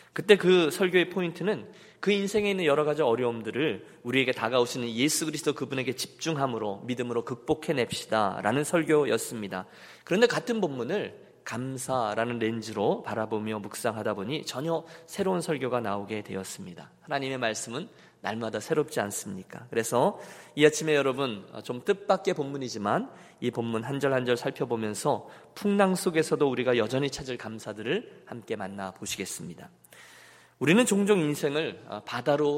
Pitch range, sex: 115-155 Hz, male